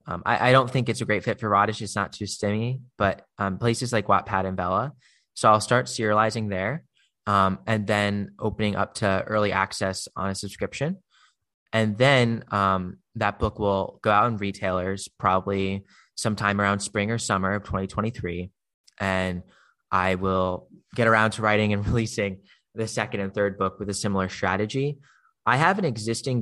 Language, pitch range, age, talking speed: English, 95-115 Hz, 20-39, 175 wpm